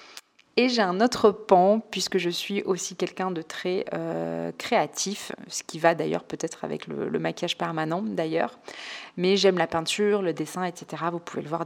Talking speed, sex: 185 wpm, female